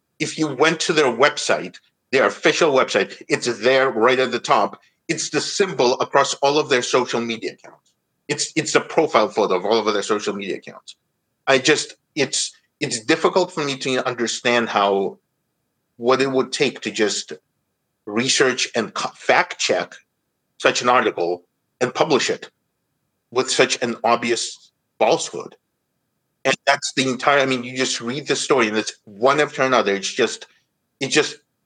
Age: 50-69